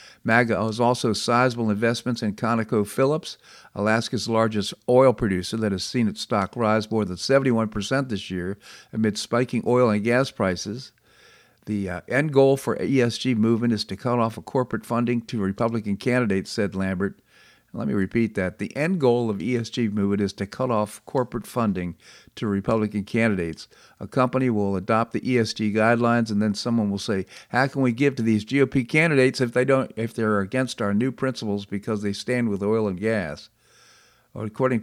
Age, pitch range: 50-69, 100-125 Hz